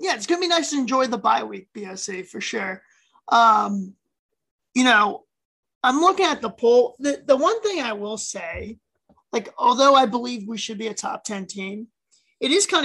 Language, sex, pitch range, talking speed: English, male, 215-275 Hz, 200 wpm